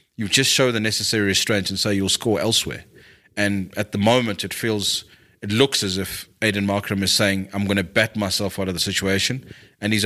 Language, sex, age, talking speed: English, male, 30-49, 215 wpm